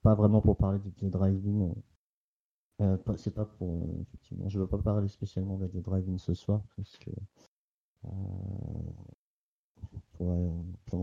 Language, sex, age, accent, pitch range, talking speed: French, male, 50-69, French, 90-100 Hz, 140 wpm